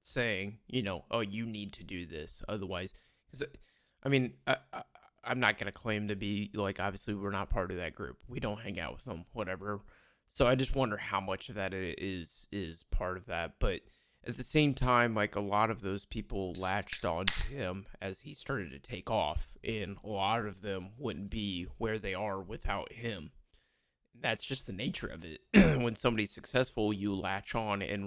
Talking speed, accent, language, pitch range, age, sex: 200 wpm, American, English, 95-115 Hz, 20-39, male